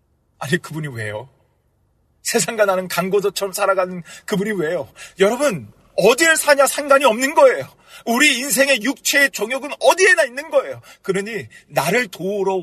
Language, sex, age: Korean, male, 40-59